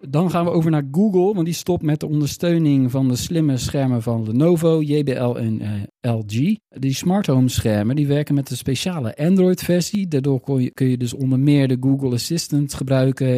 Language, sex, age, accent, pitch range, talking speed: Dutch, male, 40-59, Dutch, 115-150 Hz, 195 wpm